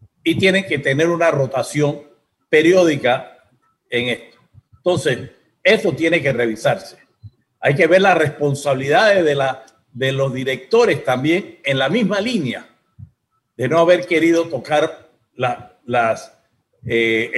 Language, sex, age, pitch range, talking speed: Spanish, male, 50-69, 130-170 Hz, 130 wpm